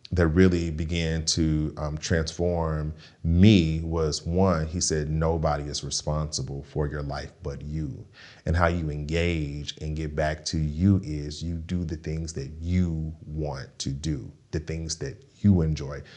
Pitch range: 75-80 Hz